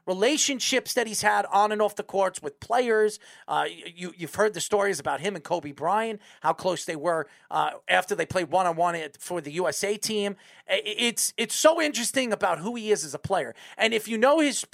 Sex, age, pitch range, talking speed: male, 40-59, 195-250 Hz, 215 wpm